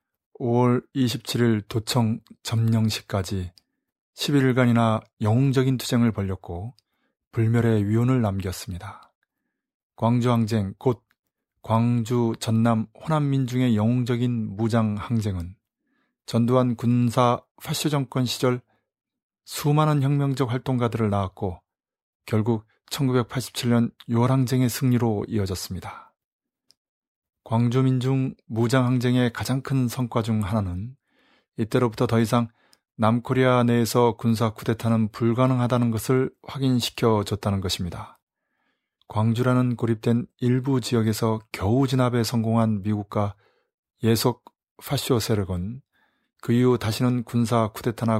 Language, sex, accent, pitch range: Korean, male, native, 110-125 Hz